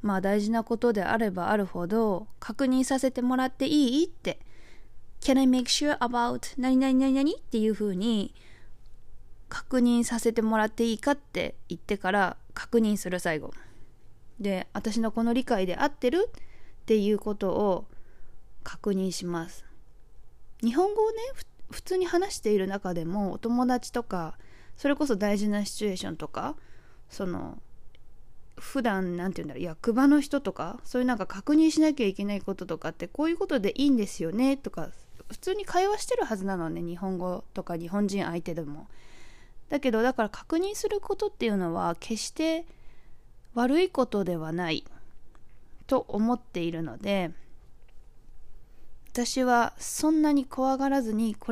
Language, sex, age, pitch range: Japanese, female, 20-39, 180-260 Hz